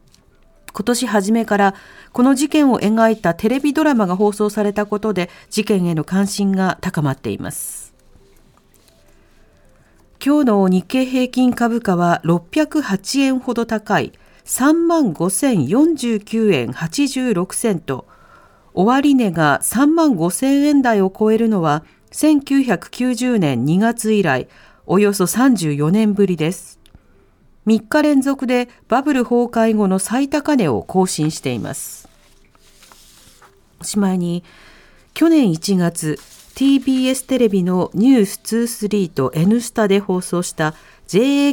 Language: Japanese